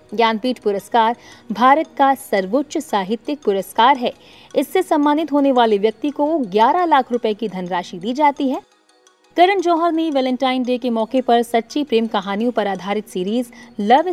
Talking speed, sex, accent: 155 wpm, female, native